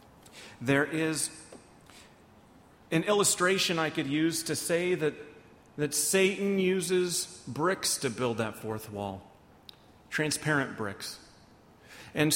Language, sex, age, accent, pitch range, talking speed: English, male, 40-59, American, 130-175 Hz, 105 wpm